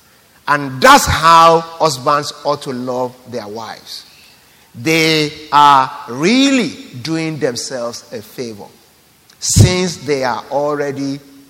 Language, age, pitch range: English, 50-69, 145-230 Hz